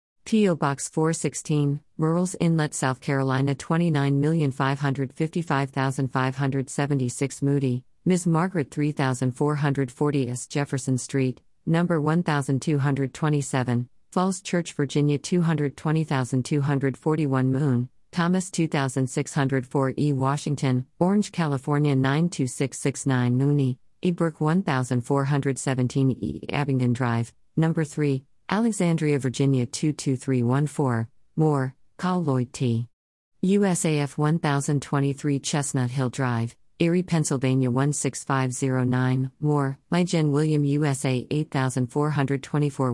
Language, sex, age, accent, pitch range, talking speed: English, female, 50-69, American, 130-155 Hz, 80 wpm